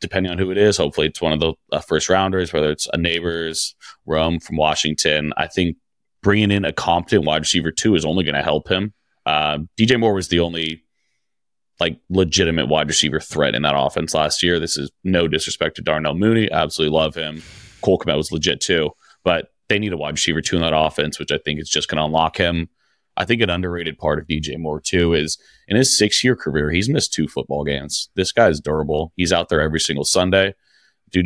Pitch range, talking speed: 80-95 Hz, 220 wpm